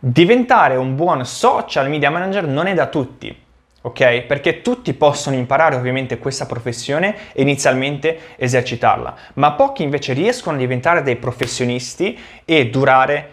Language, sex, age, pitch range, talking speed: Italian, male, 20-39, 125-170 Hz, 140 wpm